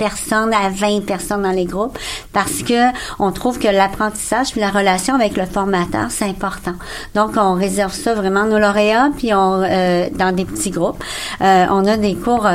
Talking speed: 180 wpm